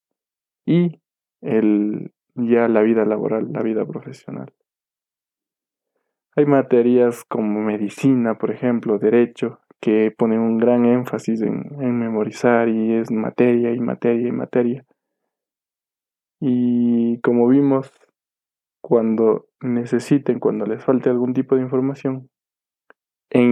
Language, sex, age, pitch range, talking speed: Spanish, male, 20-39, 115-135 Hz, 110 wpm